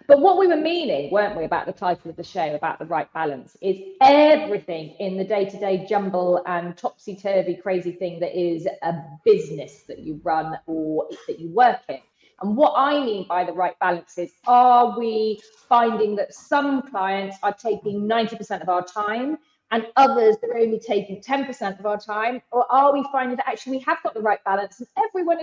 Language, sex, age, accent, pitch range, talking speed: English, female, 30-49, British, 190-275 Hz, 205 wpm